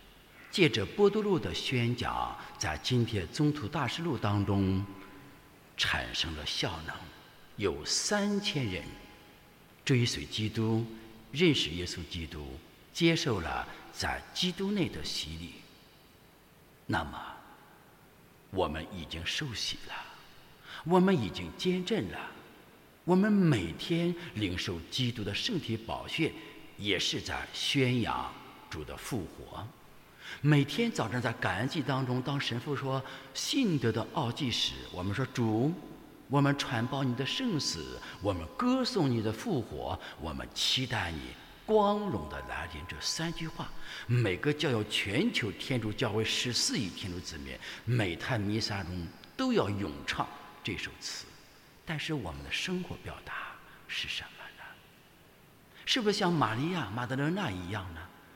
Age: 60-79